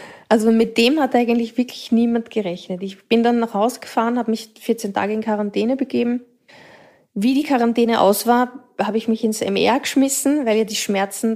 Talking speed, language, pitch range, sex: 190 wpm, German, 205-240 Hz, female